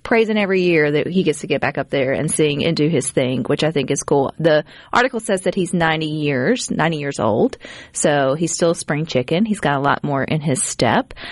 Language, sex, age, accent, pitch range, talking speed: English, female, 30-49, American, 150-195 Hz, 245 wpm